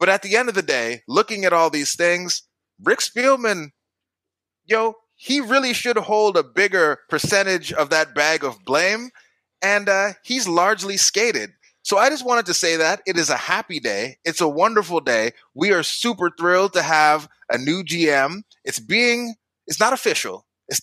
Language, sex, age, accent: English, male, 30-49, American